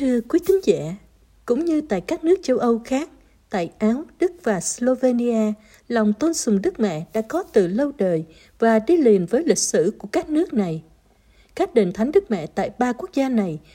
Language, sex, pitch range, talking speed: Vietnamese, female, 200-260 Hz, 210 wpm